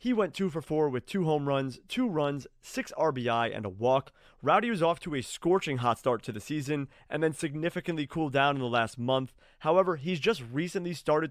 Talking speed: 220 wpm